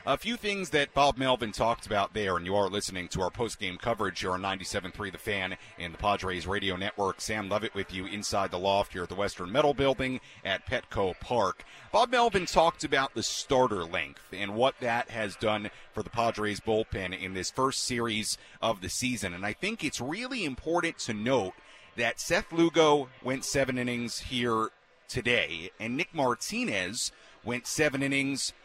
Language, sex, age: English, male, 40-59